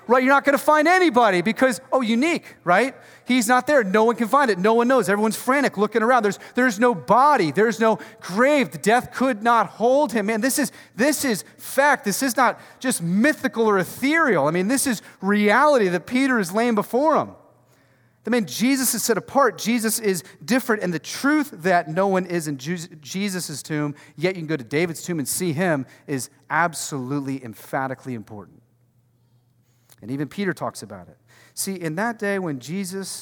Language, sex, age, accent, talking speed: English, male, 30-49, American, 195 wpm